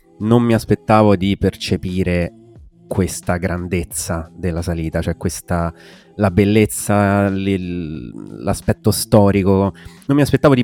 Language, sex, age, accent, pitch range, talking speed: Italian, male, 30-49, native, 90-105 Hz, 105 wpm